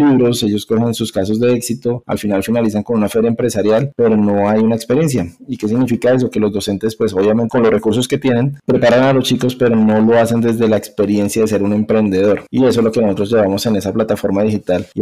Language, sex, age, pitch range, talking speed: Spanish, male, 20-39, 105-120 Hz, 240 wpm